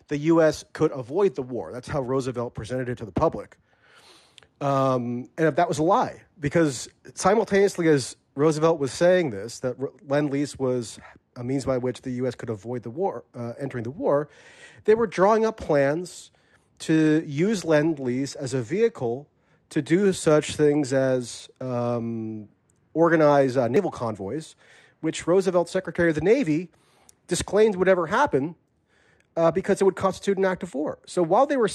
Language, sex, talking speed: English, male, 170 wpm